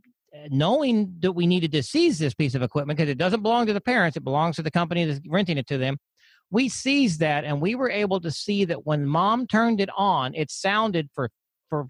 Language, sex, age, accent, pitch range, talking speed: English, male, 40-59, American, 145-190 Hz, 230 wpm